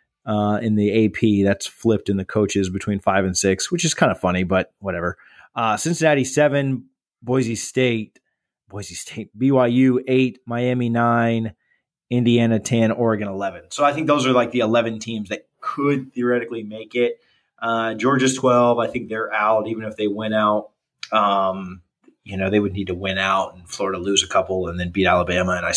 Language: English